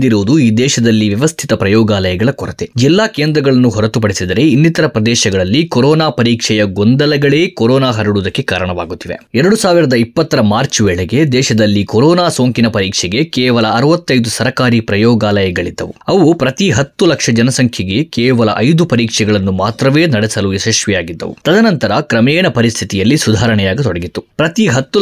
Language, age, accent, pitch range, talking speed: Kannada, 20-39, native, 110-145 Hz, 110 wpm